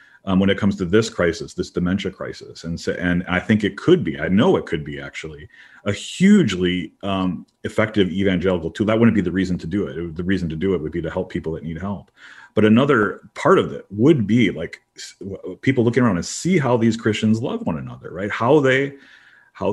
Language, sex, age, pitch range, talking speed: English, male, 40-59, 90-115 Hz, 230 wpm